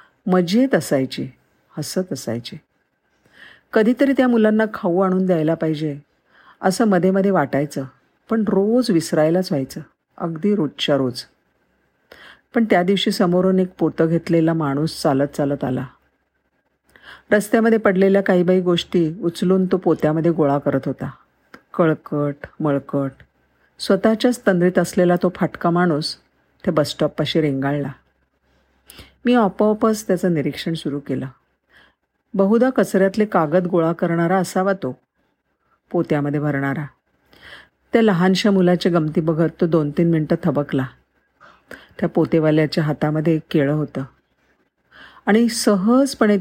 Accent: native